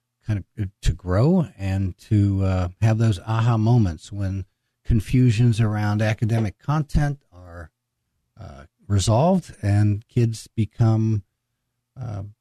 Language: English